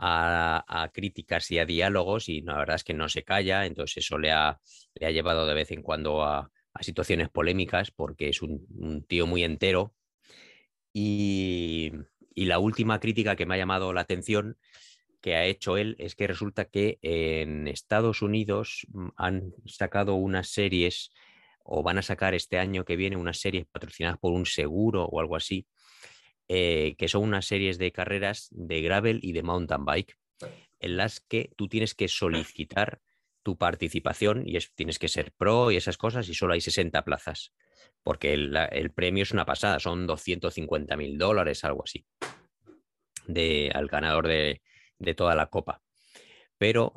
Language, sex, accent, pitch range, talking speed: Spanish, male, Spanish, 85-105 Hz, 175 wpm